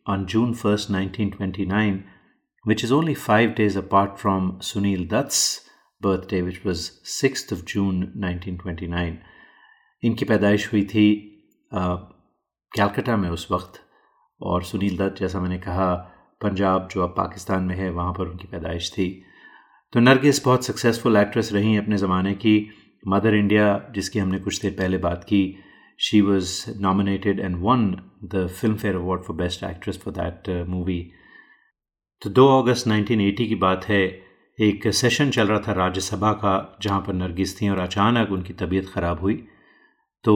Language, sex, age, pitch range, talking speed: Hindi, male, 30-49, 95-105 Hz, 155 wpm